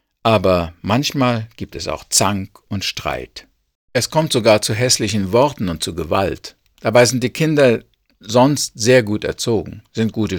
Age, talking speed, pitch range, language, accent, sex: 50-69, 155 wpm, 100-130 Hz, German, German, male